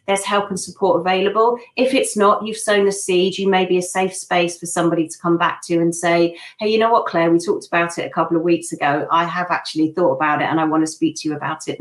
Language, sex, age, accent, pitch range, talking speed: English, female, 40-59, British, 160-195 Hz, 280 wpm